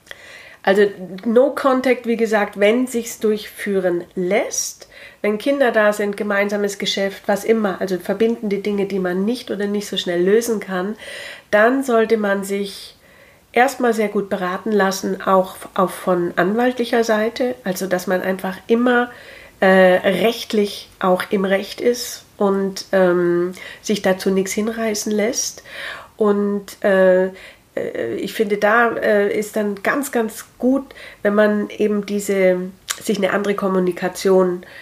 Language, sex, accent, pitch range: German, female, German, 190-225 Hz